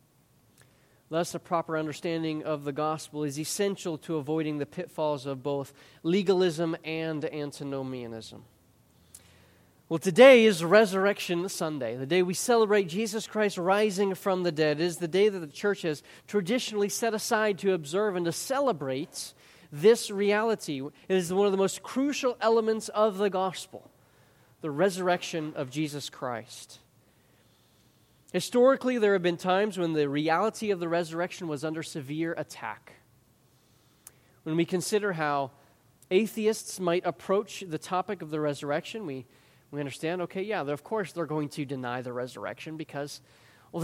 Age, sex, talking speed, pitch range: 30-49, male, 150 wpm, 140-200 Hz